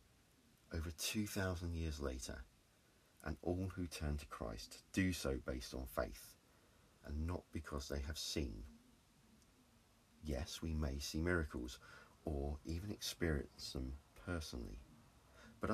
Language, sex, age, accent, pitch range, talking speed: English, male, 40-59, British, 75-100 Hz, 120 wpm